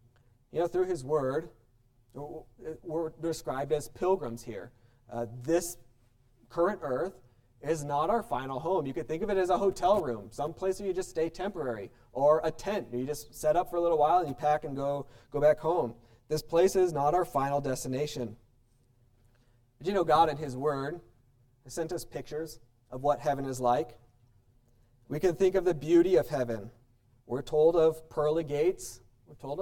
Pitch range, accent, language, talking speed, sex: 120-165 Hz, American, English, 190 wpm, male